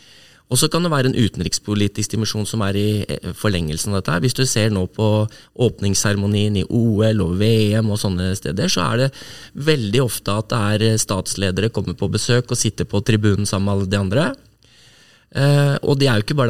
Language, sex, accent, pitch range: English, male, Swedish, 95-120 Hz